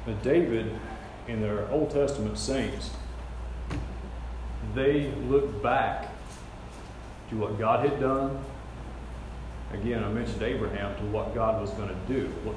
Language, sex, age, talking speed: English, male, 40-59, 130 wpm